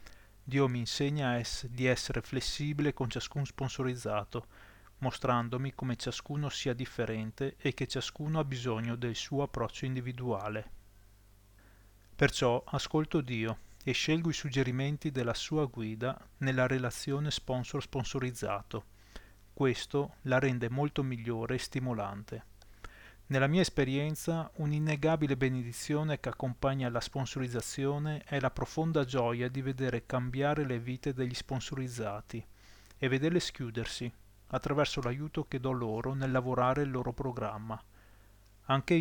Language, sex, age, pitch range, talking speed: English, male, 30-49, 110-140 Hz, 120 wpm